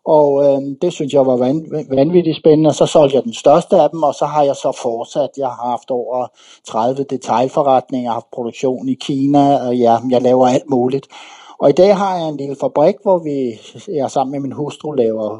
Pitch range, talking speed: 130-165 Hz, 215 wpm